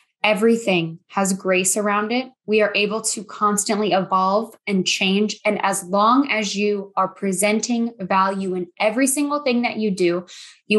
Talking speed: 160 wpm